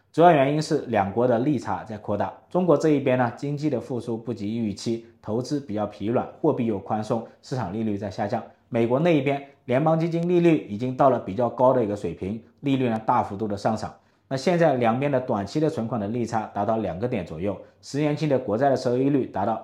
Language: Chinese